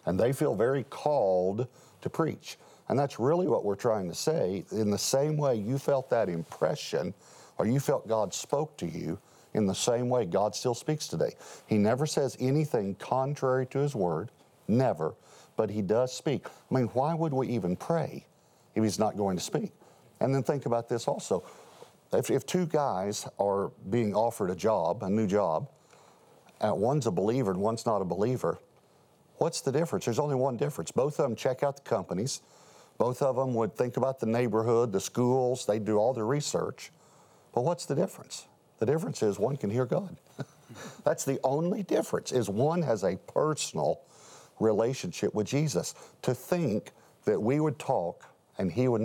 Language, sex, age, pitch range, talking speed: English, male, 50-69, 110-135 Hz, 185 wpm